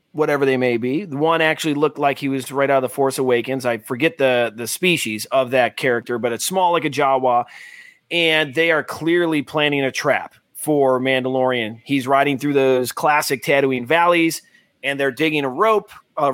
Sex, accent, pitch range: male, American, 135-175 Hz